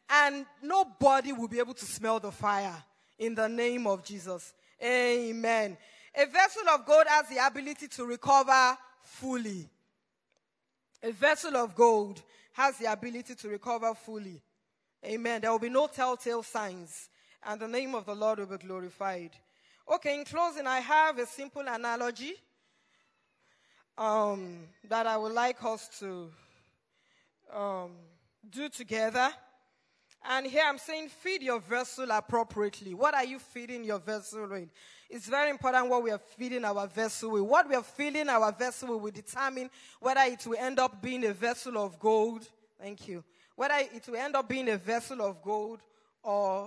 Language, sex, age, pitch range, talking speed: English, female, 20-39, 210-260 Hz, 160 wpm